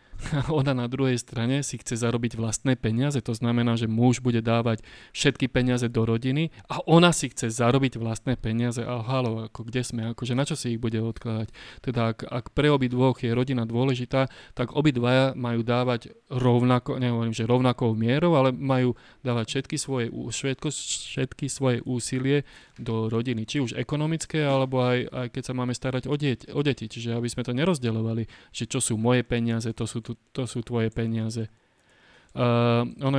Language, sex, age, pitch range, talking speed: Slovak, male, 30-49, 115-140 Hz, 180 wpm